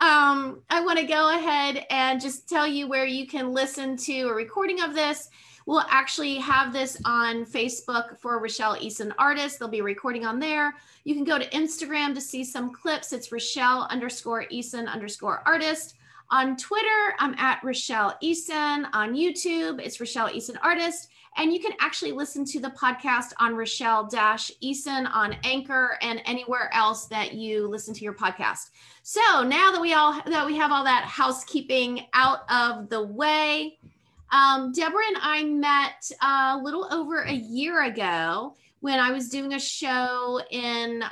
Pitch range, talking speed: 235-295 Hz, 170 wpm